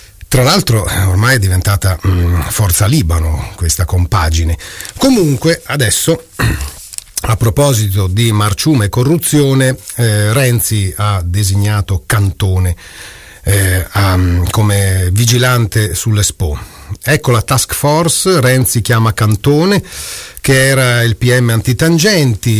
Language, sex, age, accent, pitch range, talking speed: Italian, male, 40-59, native, 95-120 Hz, 105 wpm